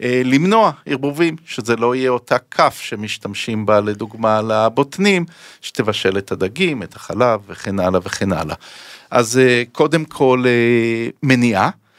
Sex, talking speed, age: male, 120 wpm, 40-59